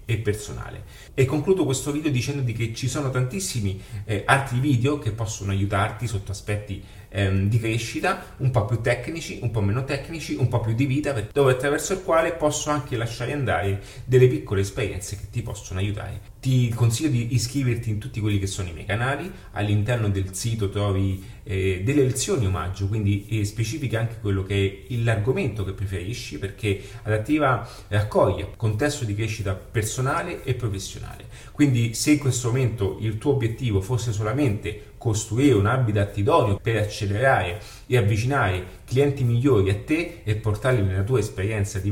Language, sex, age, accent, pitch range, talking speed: Italian, male, 30-49, native, 100-130 Hz, 165 wpm